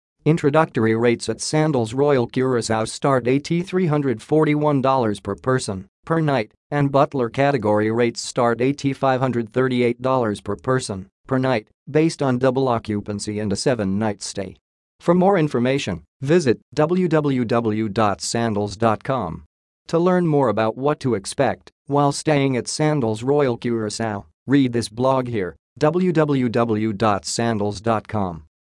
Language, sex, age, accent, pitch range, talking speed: English, male, 50-69, American, 110-145 Hz, 115 wpm